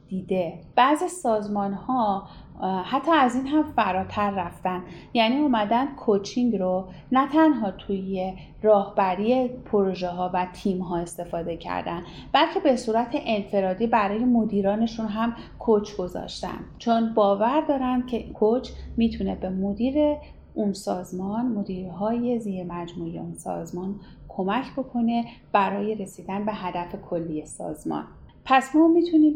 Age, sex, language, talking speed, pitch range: 30-49, female, Persian, 120 wpm, 185-240 Hz